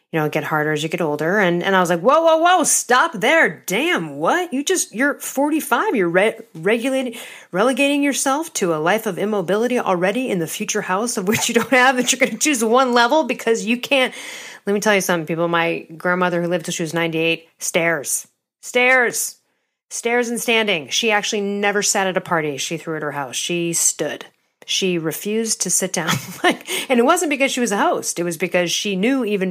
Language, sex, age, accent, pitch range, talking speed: English, female, 40-59, American, 170-235 Hz, 220 wpm